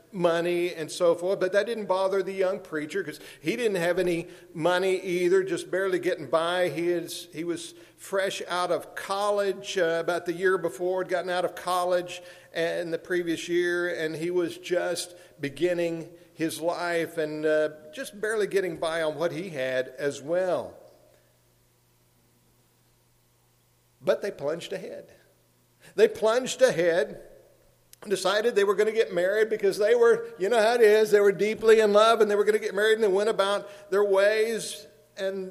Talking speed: 175 wpm